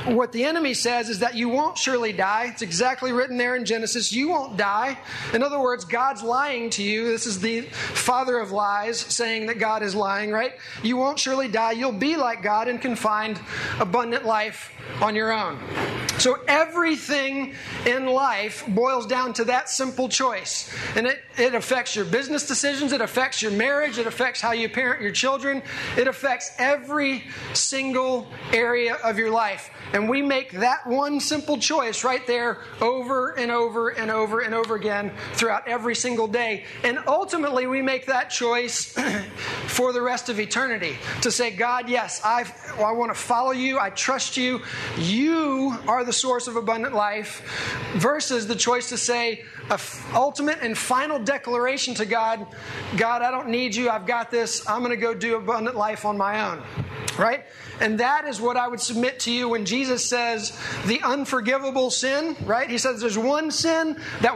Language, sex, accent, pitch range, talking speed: English, male, American, 225-260 Hz, 185 wpm